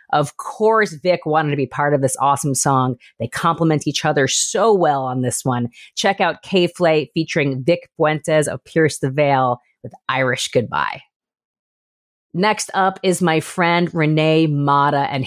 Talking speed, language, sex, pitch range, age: 160 wpm, English, female, 135-175 Hz, 30-49